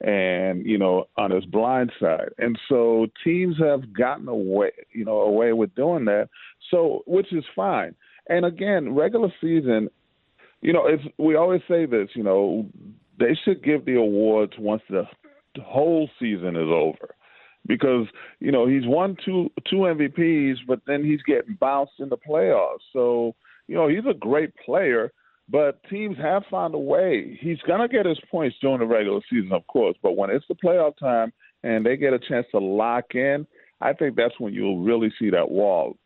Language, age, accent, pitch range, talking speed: English, 40-59, American, 115-170 Hz, 185 wpm